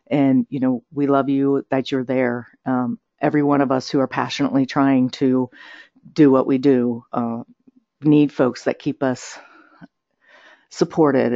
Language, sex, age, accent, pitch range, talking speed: English, female, 50-69, American, 130-170 Hz, 160 wpm